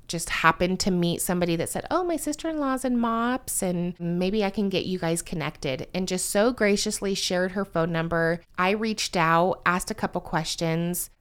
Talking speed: 185 wpm